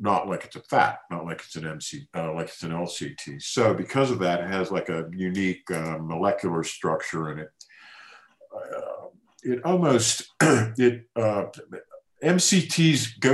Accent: American